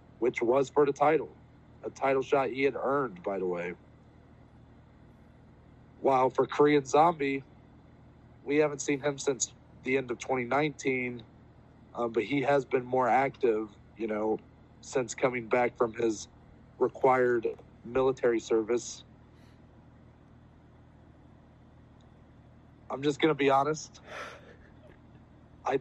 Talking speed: 120 wpm